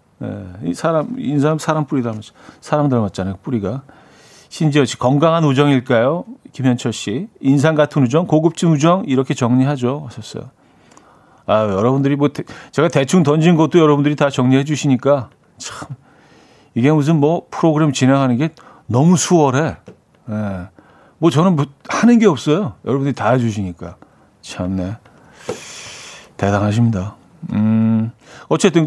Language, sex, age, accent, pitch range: Korean, male, 40-59, native, 115-155 Hz